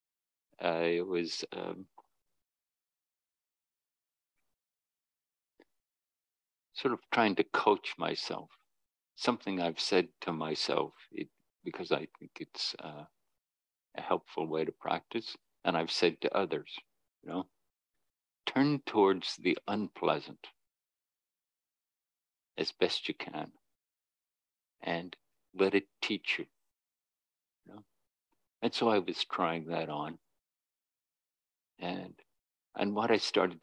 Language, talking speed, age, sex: English, 105 wpm, 50-69, male